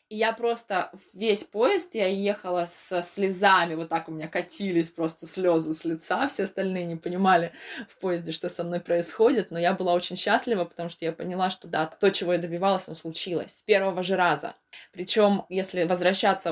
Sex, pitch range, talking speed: female, 170-195 Hz, 185 wpm